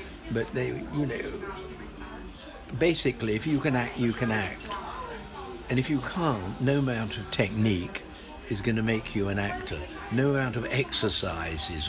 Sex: male